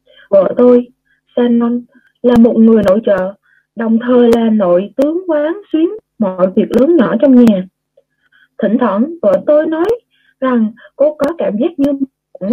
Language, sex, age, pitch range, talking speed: Vietnamese, female, 20-39, 200-280 Hz, 160 wpm